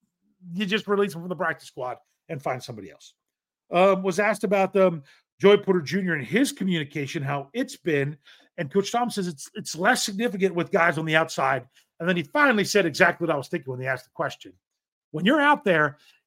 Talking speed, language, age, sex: 215 wpm, English, 40-59, male